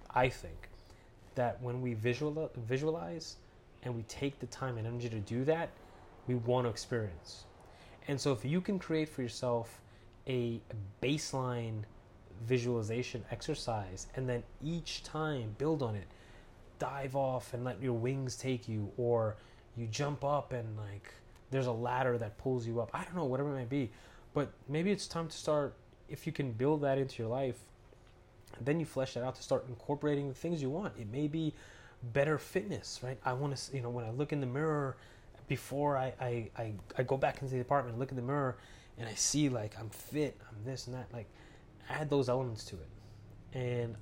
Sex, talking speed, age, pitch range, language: male, 190 wpm, 20-39, 110-135 Hz, English